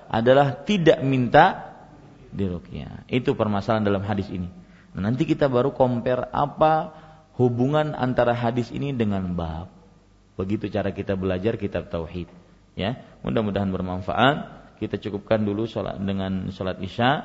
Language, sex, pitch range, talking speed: Malay, male, 105-140 Hz, 125 wpm